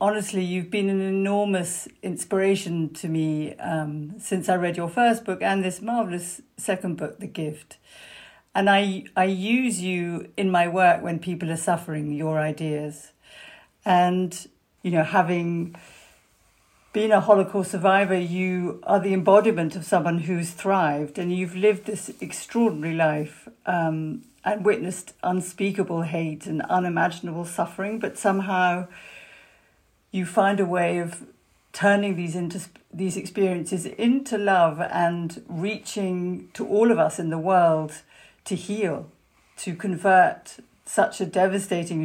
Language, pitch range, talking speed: English, 170-200 Hz, 135 wpm